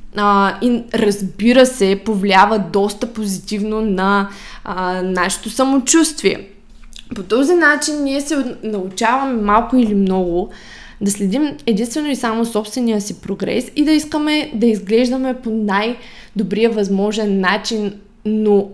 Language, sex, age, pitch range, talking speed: Bulgarian, female, 20-39, 205-255 Hz, 115 wpm